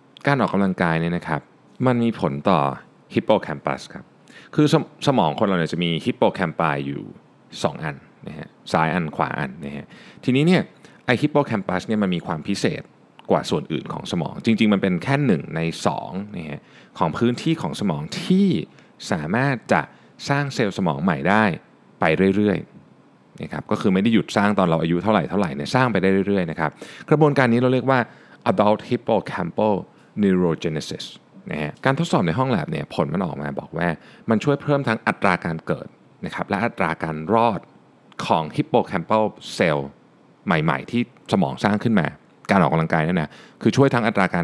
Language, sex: Thai, male